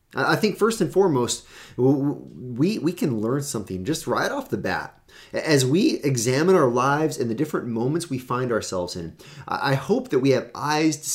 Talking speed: 190 wpm